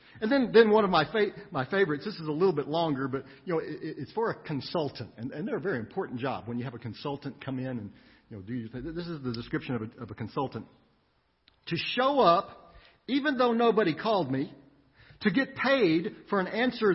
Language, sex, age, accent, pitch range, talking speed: English, male, 50-69, American, 155-235 Hz, 235 wpm